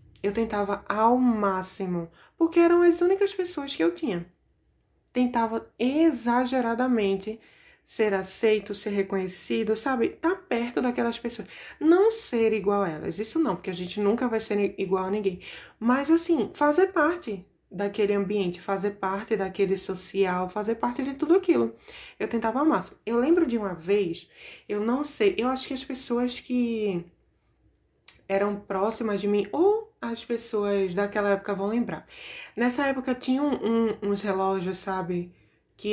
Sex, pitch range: female, 195-270 Hz